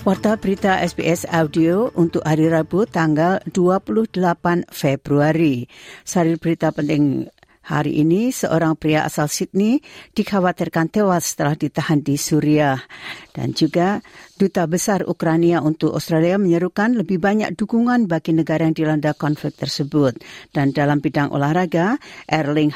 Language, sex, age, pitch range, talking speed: Indonesian, female, 50-69, 155-190 Hz, 125 wpm